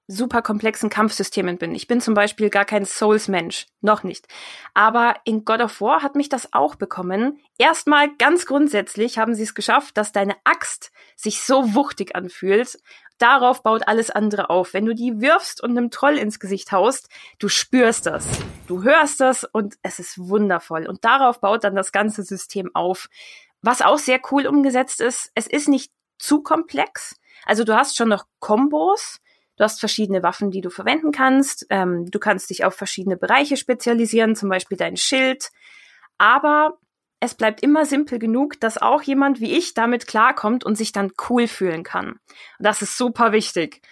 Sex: female